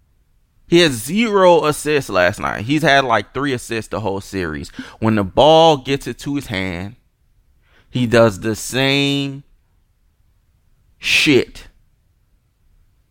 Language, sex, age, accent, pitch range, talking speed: English, male, 20-39, American, 90-140 Hz, 125 wpm